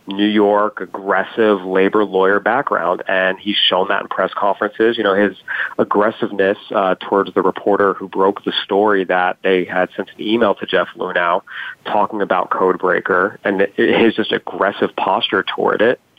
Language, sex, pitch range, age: English, male, 100-110 Hz, 30-49